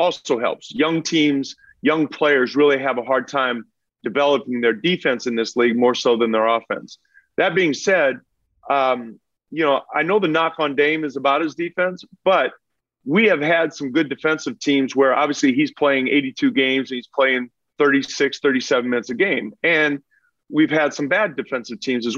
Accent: American